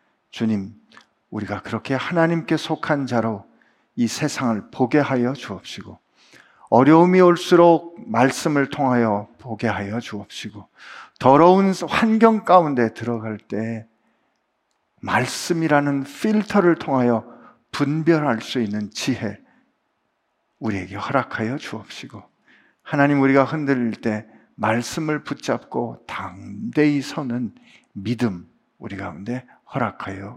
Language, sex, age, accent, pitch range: Korean, male, 50-69, native, 115-155 Hz